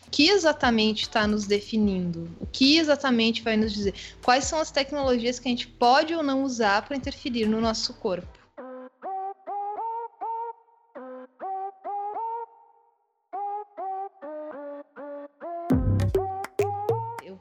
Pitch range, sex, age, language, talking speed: 205-295 Hz, female, 20-39, Portuguese, 100 wpm